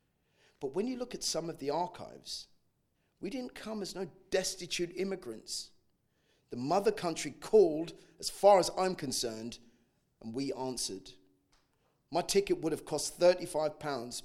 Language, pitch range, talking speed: English, 130-180 Hz, 145 wpm